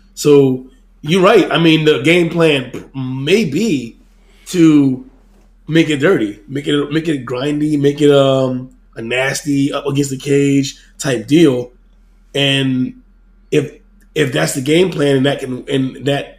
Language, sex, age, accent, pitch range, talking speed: English, male, 20-39, American, 130-165 Hz, 155 wpm